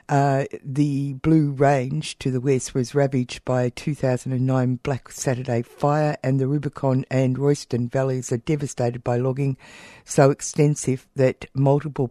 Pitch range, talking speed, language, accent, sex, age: 125-145 Hz, 145 wpm, English, Australian, female, 60-79